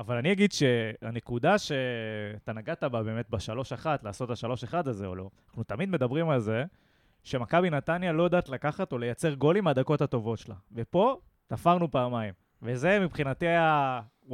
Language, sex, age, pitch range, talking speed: Hebrew, male, 20-39, 120-155 Hz, 165 wpm